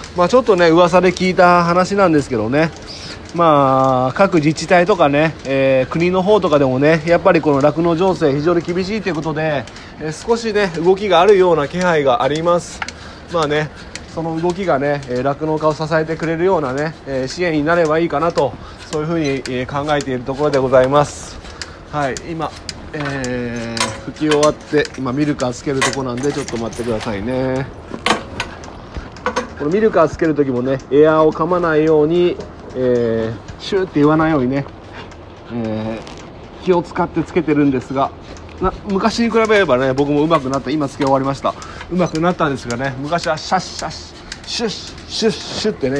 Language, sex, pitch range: Japanese, male, 130-170 Hz